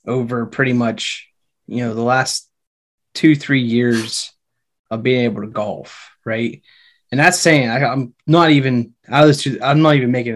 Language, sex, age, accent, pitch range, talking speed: English, male, 20-39, American, 120-150 Hz, 175 wpm